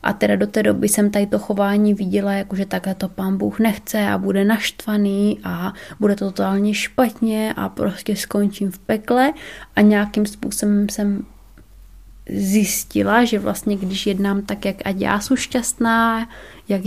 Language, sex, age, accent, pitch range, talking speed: Czech, female, 20-39, native, 195-220 Hz, 165 wpm